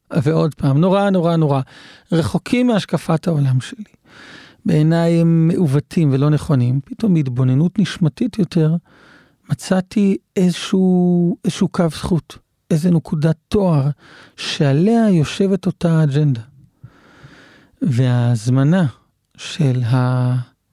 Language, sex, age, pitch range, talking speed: Hebrew, male, 40-59, 135-180 Hz, 95 wpm